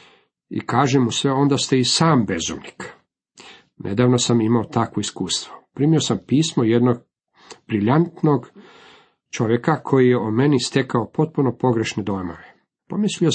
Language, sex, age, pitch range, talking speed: Croatian, male, 50-69, 110-145 Hz, 130 wpm